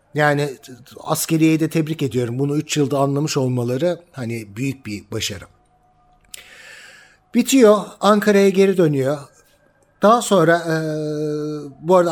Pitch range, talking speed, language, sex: 145-200 Hz, 115 wpm, Turkish, male